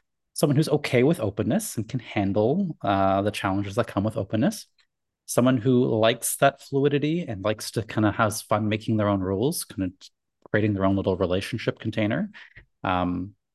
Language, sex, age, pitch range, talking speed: English, male, 30-49, 100-125 Hz, 175 wpm